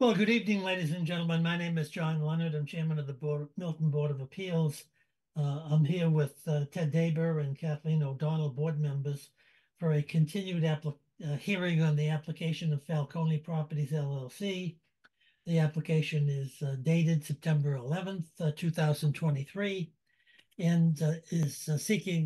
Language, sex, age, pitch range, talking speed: English, male, 60-79, 145-165 Hz, 155 wpm